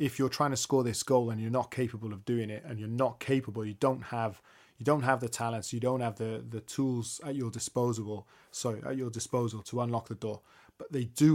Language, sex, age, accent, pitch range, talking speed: English, male, 20-39, British, 115-130 Hz, 245 wpm